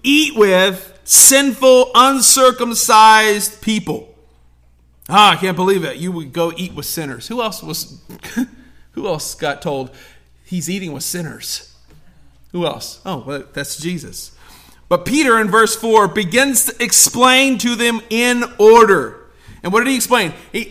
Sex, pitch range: male, 185-235 Hz